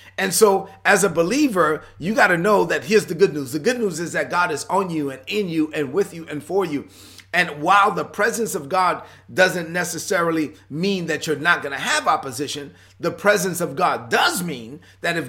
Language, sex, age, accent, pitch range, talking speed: English, male, 30-49, American, 145-200 Hz, 220 wpm